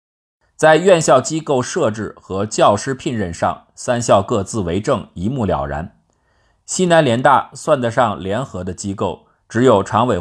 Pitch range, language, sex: 90-130 Hz, Chinese, male